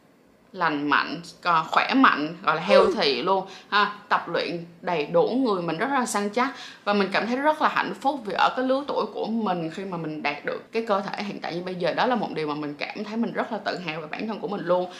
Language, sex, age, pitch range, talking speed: Vietnamese, female, 20-39, 180-245 Hz, 270 wpm